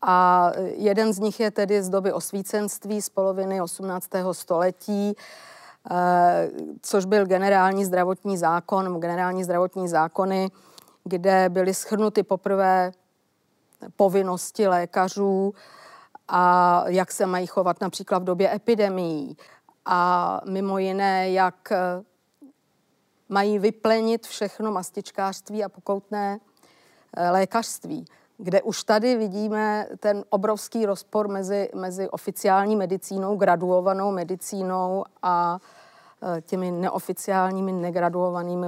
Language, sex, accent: Czech, female, native